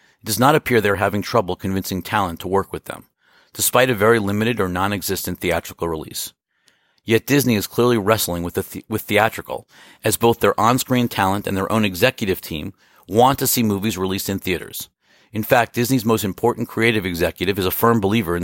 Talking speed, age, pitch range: 200 wpm, 50-69, 90-110 Hz